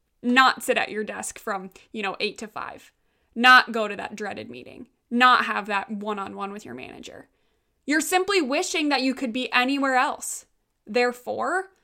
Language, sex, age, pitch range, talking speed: English, female, 10-29, 230-295 Hz, 170 wpm